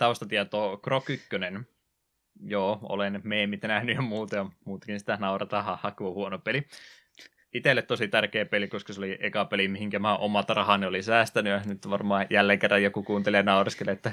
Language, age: Finnish, 20-39